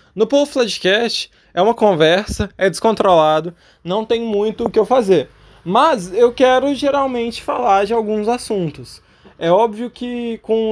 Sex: male